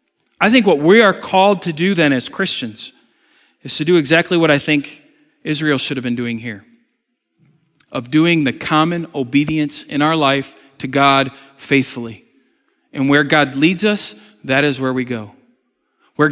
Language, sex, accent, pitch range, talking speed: English, male, American, 140-225 Hz, 170 wpm